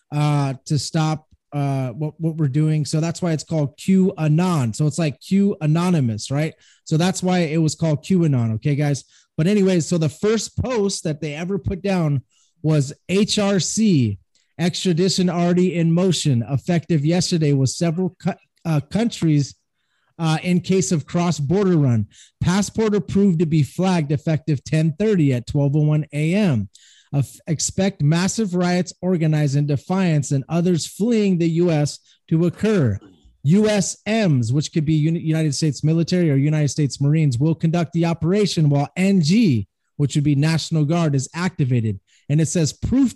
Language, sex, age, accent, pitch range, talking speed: English, male, 20-39, American, 145-180 Hz, 160 wpm